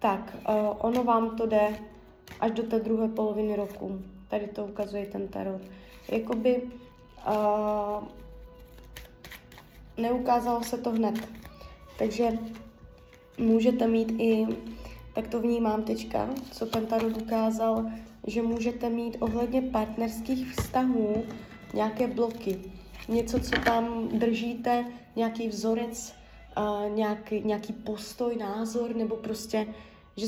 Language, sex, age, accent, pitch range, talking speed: Czech, female, 20-39, native, 210-235 Hz, 105 wpm